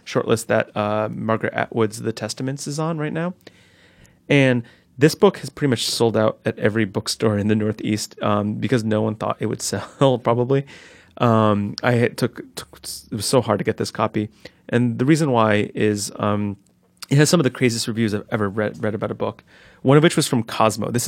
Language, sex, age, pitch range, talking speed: English, male, 30-49, 105-135 Hz, 210 wpm